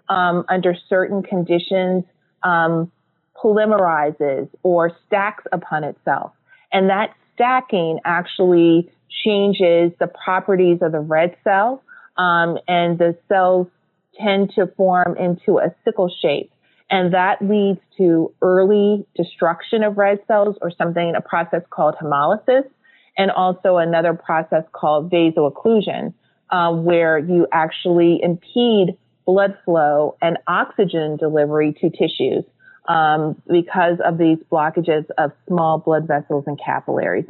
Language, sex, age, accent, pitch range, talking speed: English, female, 30-49, American, 160-190 Hz, 120 wpm